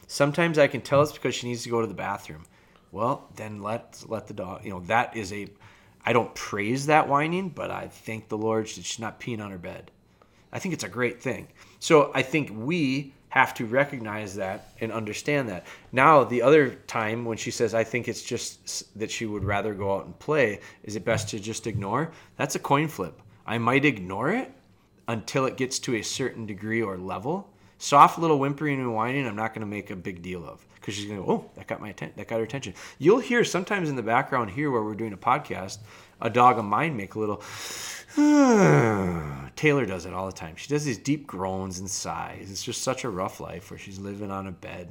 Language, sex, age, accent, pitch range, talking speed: English, male, 30-49, American, 100-130 Hz, 230 wpm